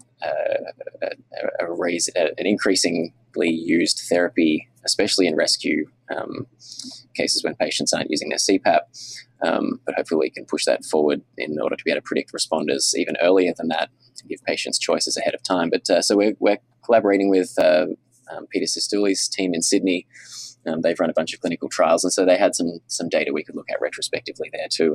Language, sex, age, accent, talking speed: English, male, 20-39, Australian, 200 wpm